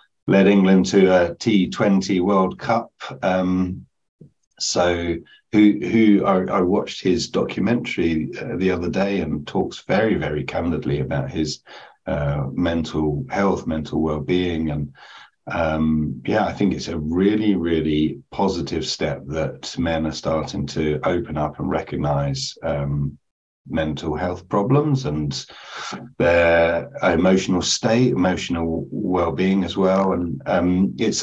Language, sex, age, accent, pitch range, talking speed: English, male, 40-59, British, 80-100 Hz, 135 wpm